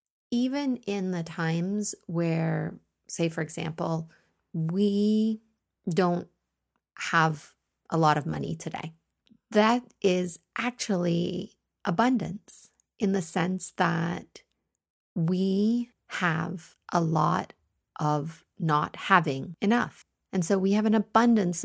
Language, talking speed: English, 105 wpm